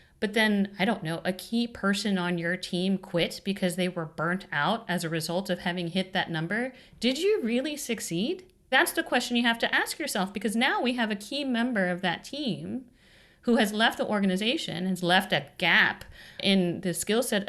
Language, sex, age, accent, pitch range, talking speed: English, female, 40-59, American, 170-210 Hz, 205 wpm